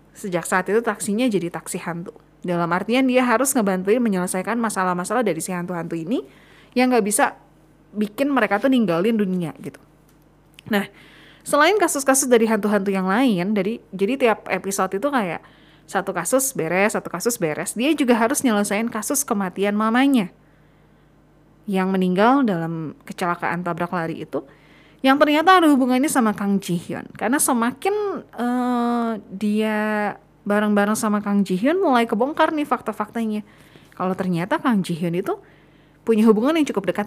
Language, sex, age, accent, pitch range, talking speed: Indonesian, female, 20-39, native, 180-245 Hz, 150 wpm